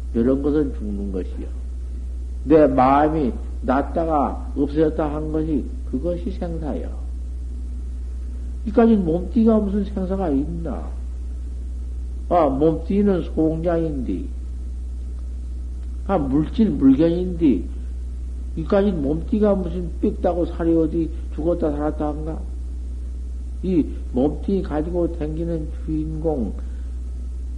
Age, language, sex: 60-79, Korean, male